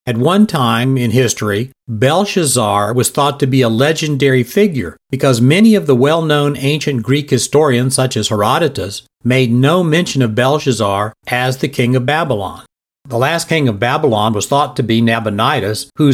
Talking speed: 165 wpm